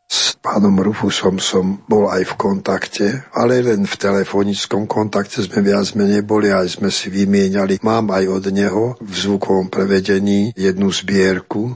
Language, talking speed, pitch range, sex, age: Slovak, 155 wpm, 95-105 Hz, male, 50-69